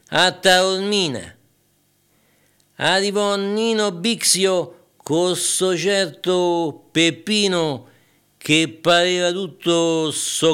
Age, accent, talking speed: 60-79, native, 75 wpm